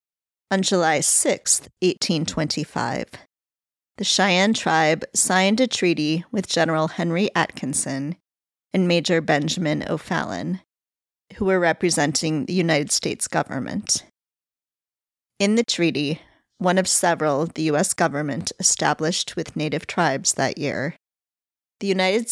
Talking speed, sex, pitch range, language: 115 wpm, female, 160-195 Hz, English